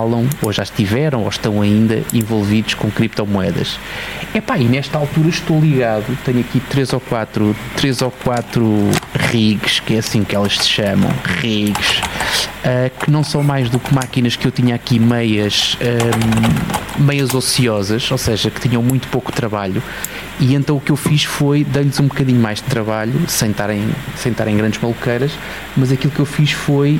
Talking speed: 180 wpm